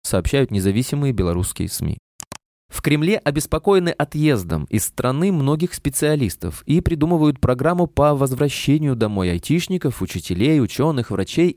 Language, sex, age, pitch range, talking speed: Russian, male, 20-39, 100-150 Hz, 115 wpm